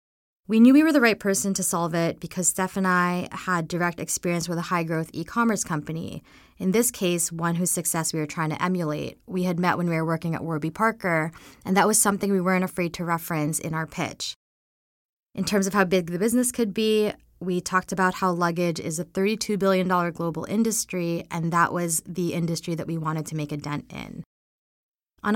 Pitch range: 165-195 Hz